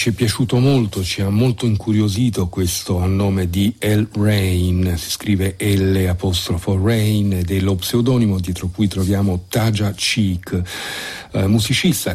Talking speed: 145 wpm